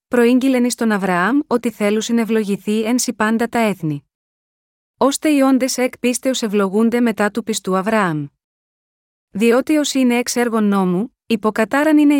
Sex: female